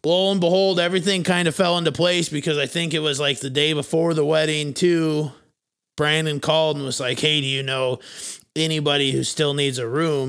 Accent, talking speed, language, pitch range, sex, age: American, 210 wpm, English, 135-160 Hz, male, 30-49